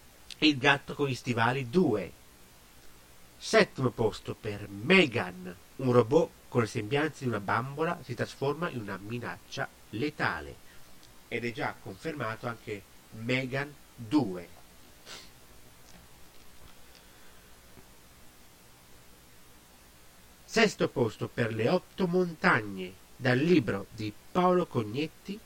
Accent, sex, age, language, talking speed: native, male, 50-69, Italian, 100 wpm